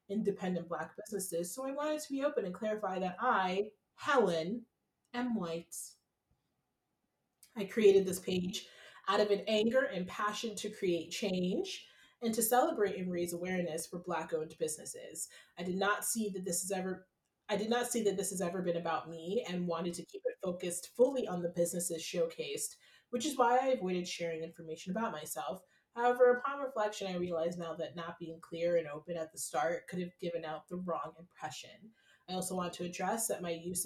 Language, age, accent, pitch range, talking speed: English, 20-39, American, 170-215 Hz, 190 wpm